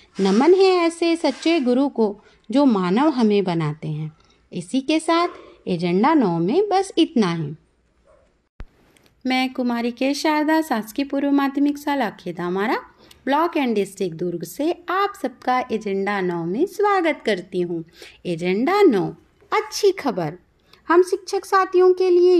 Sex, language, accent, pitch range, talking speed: female, Hindi, native, 225-360 Hz, 135 wpm